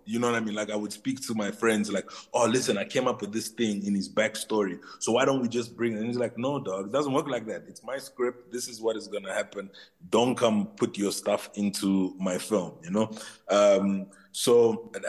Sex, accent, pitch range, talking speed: male, Nigerian, 105-130 Hz, 255 wpm